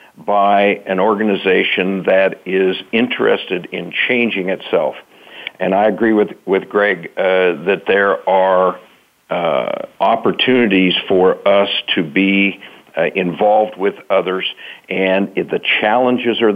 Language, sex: English, male